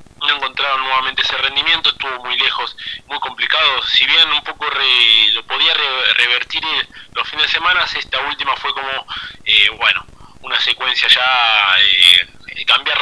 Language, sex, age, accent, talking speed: Spanish, male, 30-49, Argentinian, 155 wpm